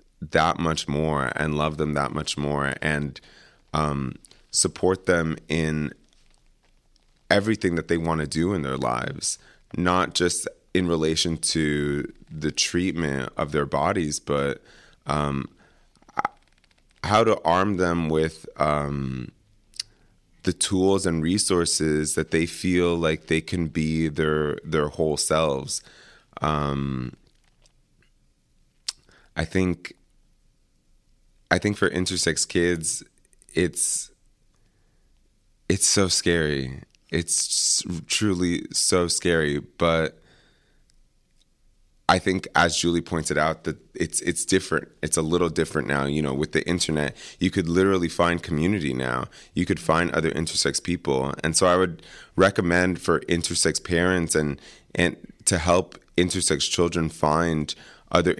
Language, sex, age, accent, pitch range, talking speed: English, male, 30-49, American, 75-85 Hz, 125 wpm